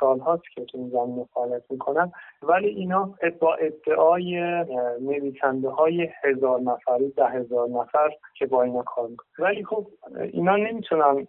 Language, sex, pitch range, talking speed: Persian, male, 130-175 Hz, 130 wpm